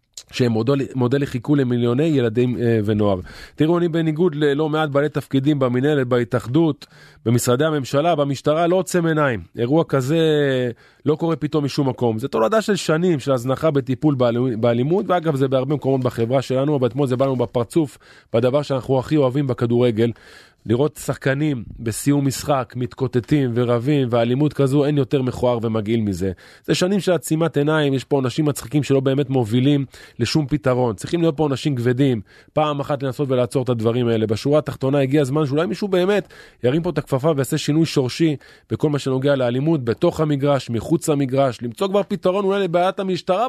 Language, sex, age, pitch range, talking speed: Hebrew, male, 20-39, 125-155 Hz, 165 wpm